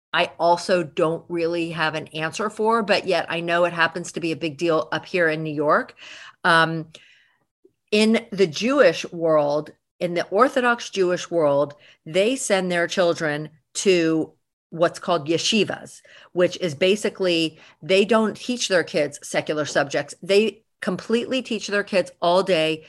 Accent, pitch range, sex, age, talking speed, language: American, 165-205 Hz, female, 50-69, 155 wpm, English